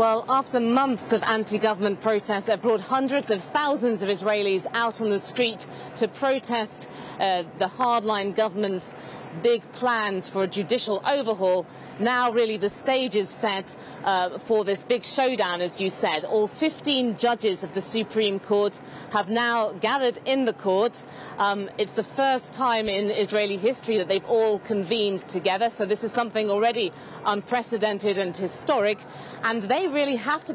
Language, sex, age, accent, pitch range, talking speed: English, female, 40-59, British, 205-255 Hz, 160 wpm